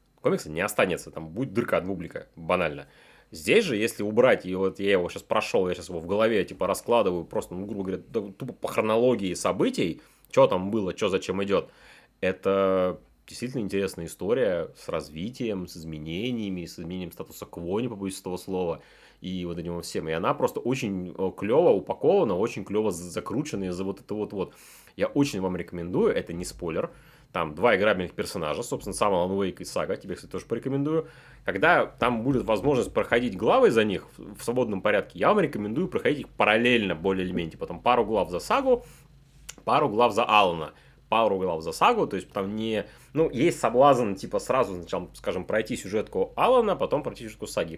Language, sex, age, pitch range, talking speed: Russian, male, 30-49, 90-125 Hz, 185 wpm